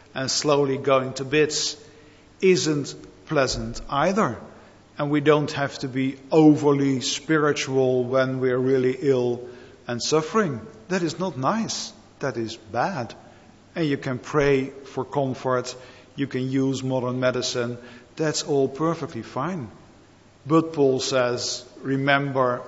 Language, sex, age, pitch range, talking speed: English, male, 50-69, 125-150 Hz, 125 wpm